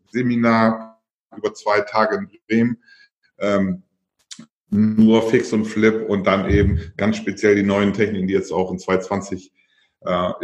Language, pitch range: German, 110-125 Hz